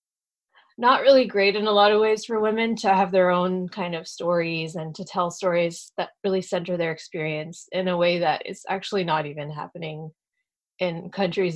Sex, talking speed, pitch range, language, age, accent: female, 190 wpm, 170-215 Hz, English, 20-39, American